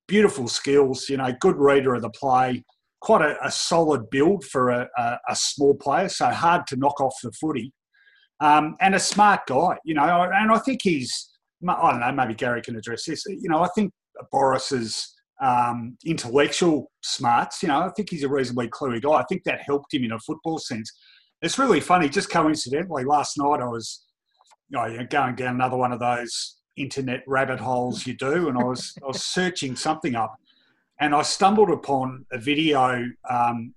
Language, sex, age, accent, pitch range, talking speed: English, male, 30-49, Australian, 125-160 Hz, 195 wpm